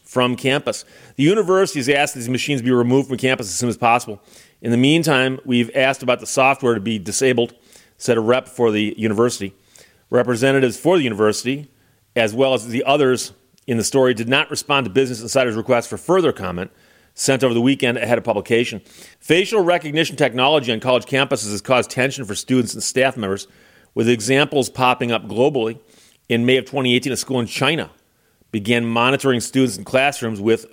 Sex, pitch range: male, 115-140 Hz